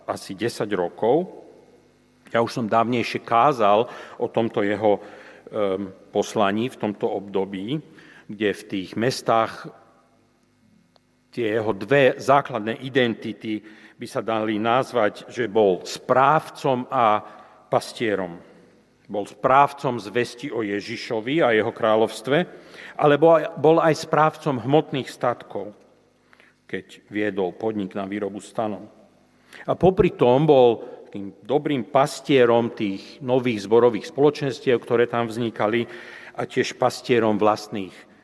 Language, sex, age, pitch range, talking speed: Slovak, male, 50-69, 105-135 Hz, 110 wpm